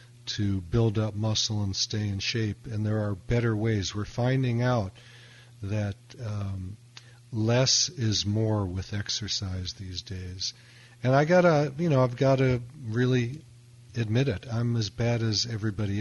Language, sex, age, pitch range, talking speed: English, male, 50-69, 105-120 Hz, 150 wpm